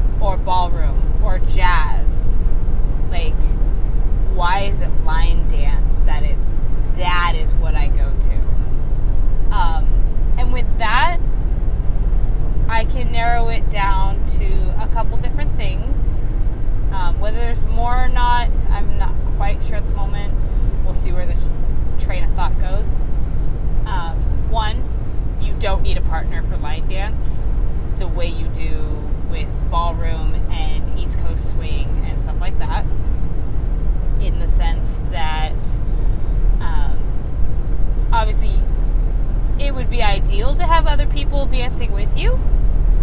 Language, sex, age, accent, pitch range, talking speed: English, female, 20-39, American, 85-110 Hz, 130 wpm